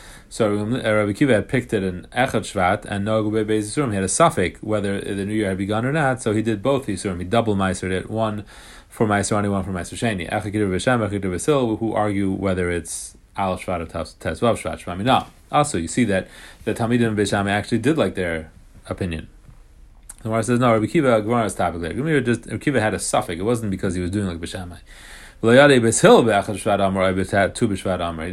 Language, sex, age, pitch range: English, male, 30-49, 95-115 Hz